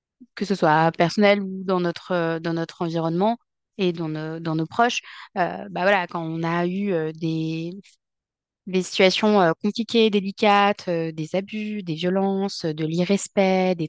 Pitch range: 175-225 Hz